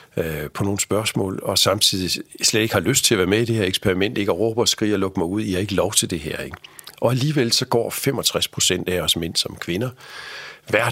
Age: 50-69